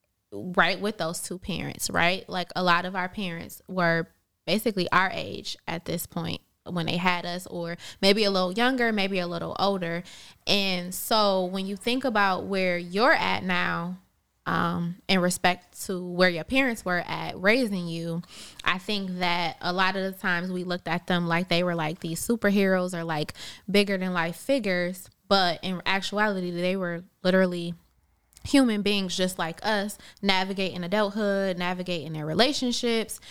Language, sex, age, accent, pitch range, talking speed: English, female, 20-39, American, 175-200 Hz, 170 wpm